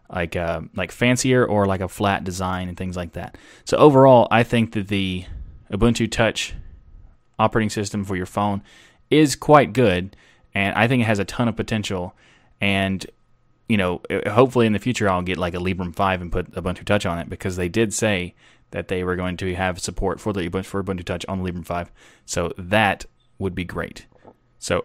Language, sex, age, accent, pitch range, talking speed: English, male, 20-39, American, 95-115 Hz, 200 wpm